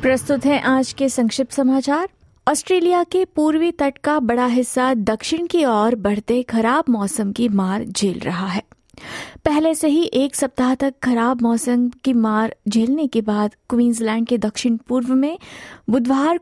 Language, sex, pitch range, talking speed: Hindi, female, 220-275 Hz, 155 wpm